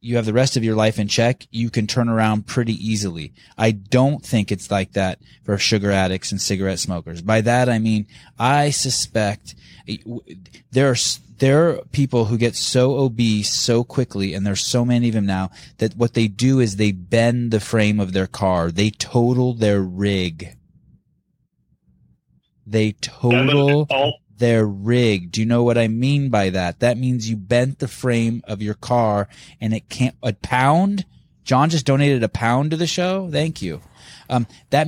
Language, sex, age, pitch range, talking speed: English, male, 20-39, 105-135 Hz, 180 wpm